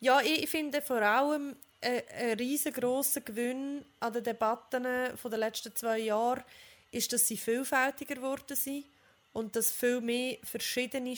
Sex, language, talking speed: female, German, 145 wpm